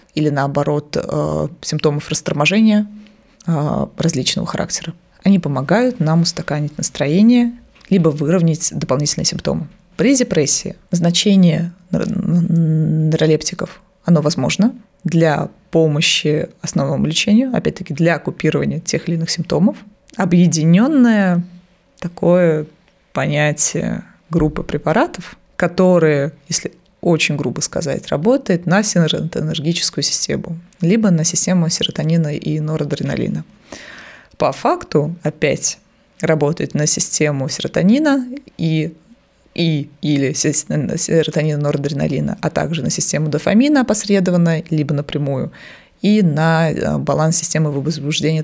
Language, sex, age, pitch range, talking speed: Russian, female, 20-39, 155-190 Hz, 95 wpm